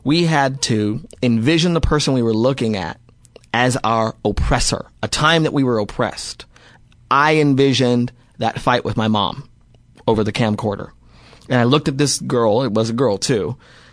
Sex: male